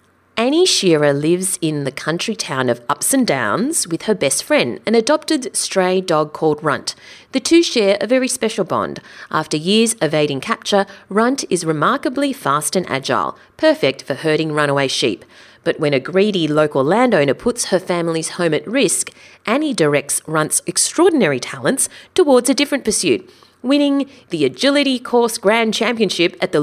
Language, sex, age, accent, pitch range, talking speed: English, female, 30-49, Australian, 155-245 Hz, 160 wpm